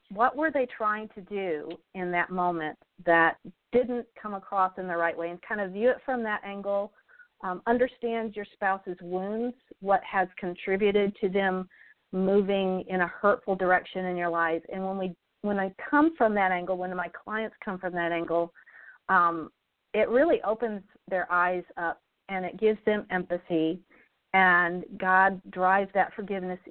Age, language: 40-59, English